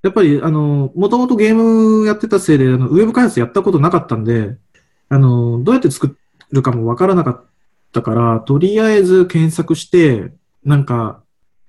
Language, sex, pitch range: Japanese, male, 120-170 Hz